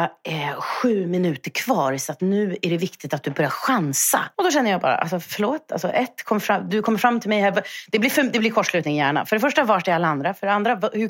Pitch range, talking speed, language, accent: 175-245 Hz, 260 wpm, Swedish, native